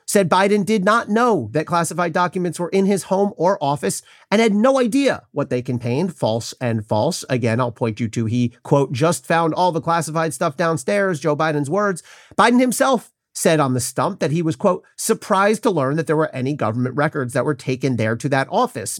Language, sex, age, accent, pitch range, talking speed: English, male, 40-59, American, 130-190 Hz, 210 wpm